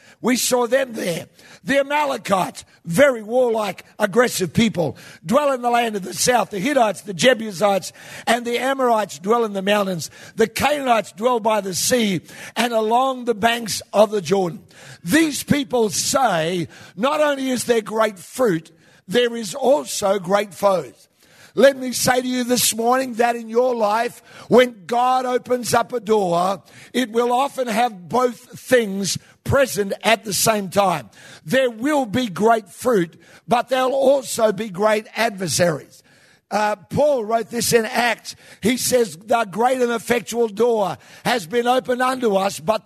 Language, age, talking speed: English, 60-79, 160 wpm